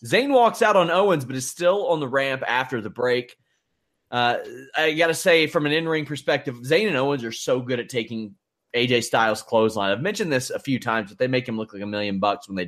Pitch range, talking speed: 120-155 Hz, 240 wpm